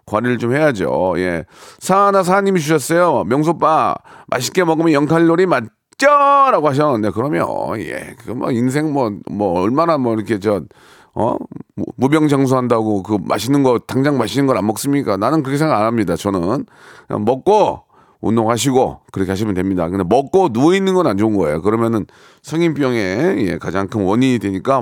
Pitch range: 110-170 Hz